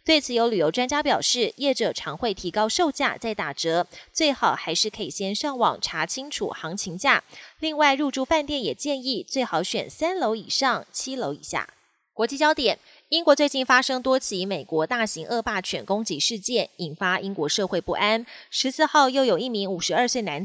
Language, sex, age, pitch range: Chinese, female, 20-39, 195-270 Hz